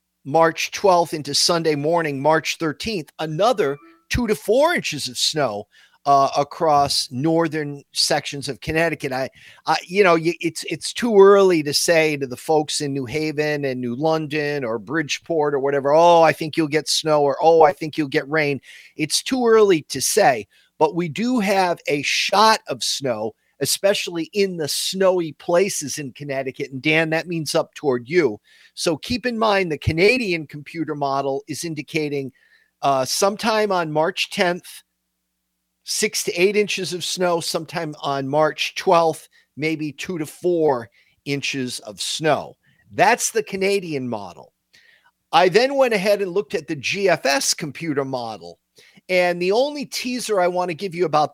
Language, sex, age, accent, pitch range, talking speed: English, male, 40-59, American, 140-180 Hz, 165 wpm